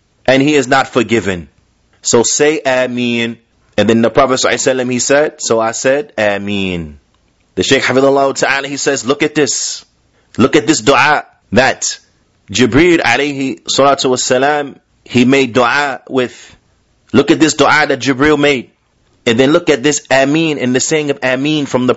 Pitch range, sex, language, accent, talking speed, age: 120-150 Hz, male, English, American, 165 wpm, 30-49